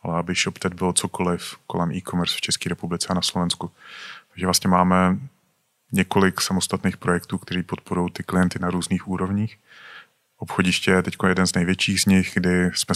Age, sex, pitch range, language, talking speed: 30-49, male, 90-95 Hz, Slovak, 165 wpm